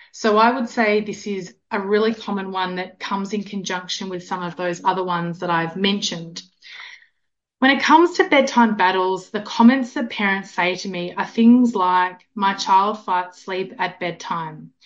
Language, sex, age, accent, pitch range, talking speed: English, female, 20-39, Australian, 185-230 Hz, 180 wpm